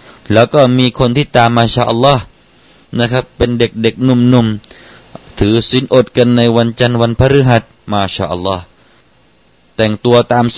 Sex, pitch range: male, 90-125 Hz